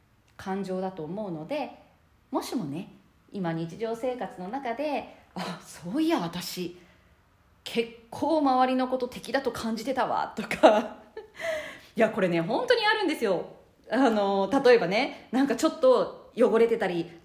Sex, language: female, Japanese